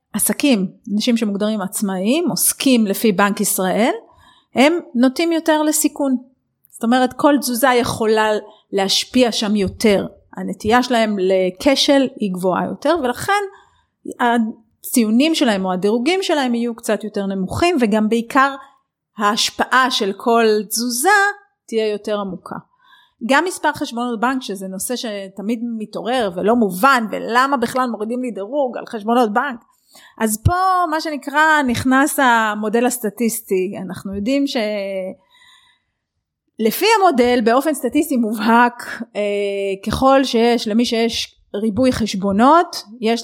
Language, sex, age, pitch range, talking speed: Hebrew, female, 30-49, 210-280 Hz, 115 wpm